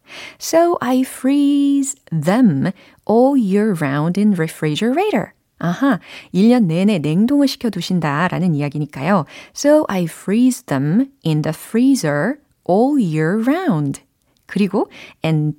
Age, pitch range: 30-49, 160-245 Hz